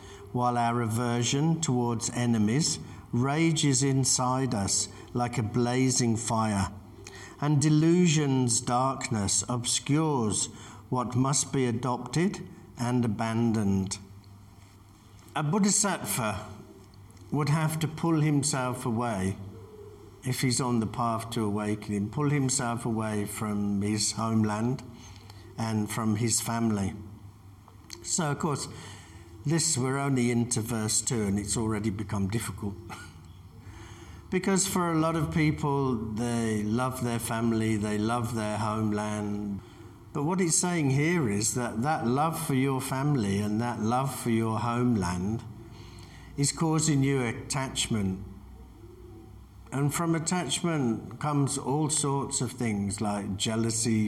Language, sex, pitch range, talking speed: English, male, 105-135 Hz, 120 wpm